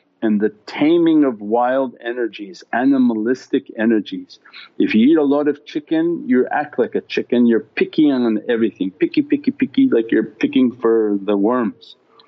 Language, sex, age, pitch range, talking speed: English, male, 50-69, 105-150 Hz, 160 wpm